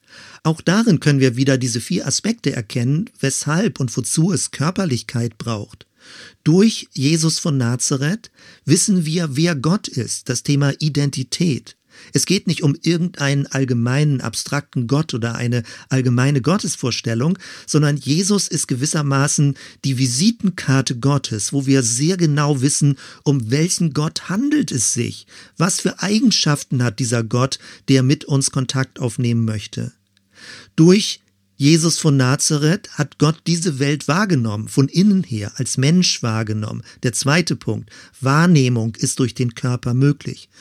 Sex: male